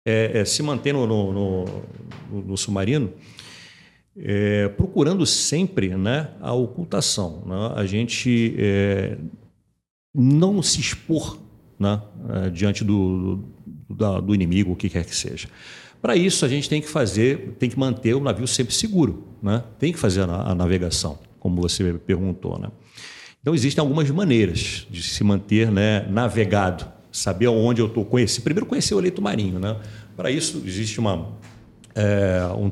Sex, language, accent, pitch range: male, Portuguese, Brazilian, 95-120 Hz